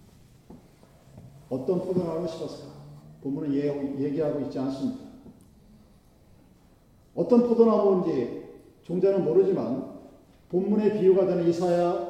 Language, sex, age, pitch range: Korean, male, 40-59, 140-210 Hz